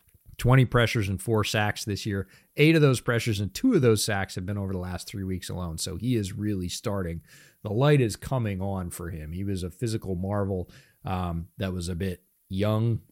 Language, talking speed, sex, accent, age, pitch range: English, 215 wpm, male, American, 30-49, 95-120 Hz